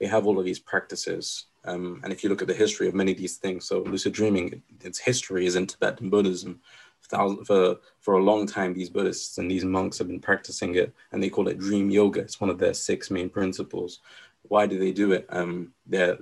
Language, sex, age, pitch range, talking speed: English, male, 20-39, 90-105 Hz, 235 wpm